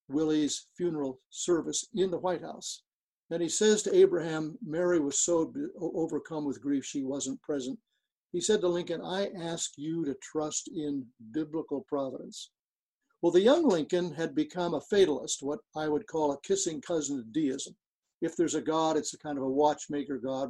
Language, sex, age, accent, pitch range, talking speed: English, male, 60-79, American, 145-195 Hz, 180 wpm